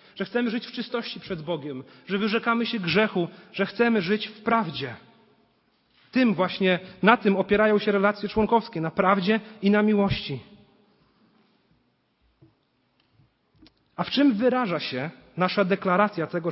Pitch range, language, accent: 175-230 Hz, Polish, native